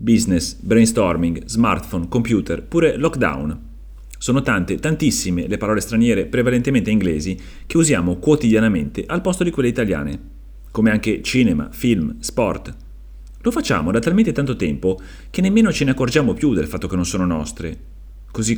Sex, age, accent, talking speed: male, 30-49, native, 150 wpm